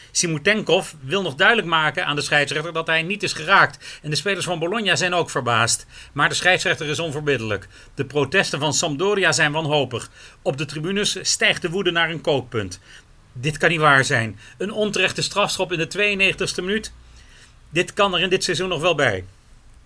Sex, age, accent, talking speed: male, 40-59, Dutch, 185 wpm